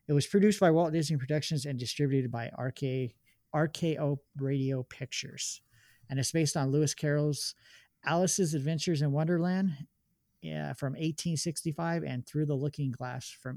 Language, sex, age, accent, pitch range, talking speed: English, male, 50-69, American, 130-160 Hz, 135 wpm